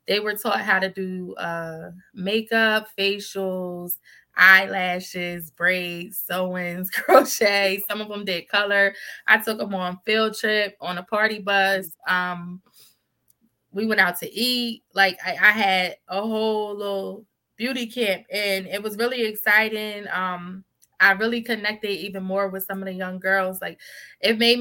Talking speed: 155 wpm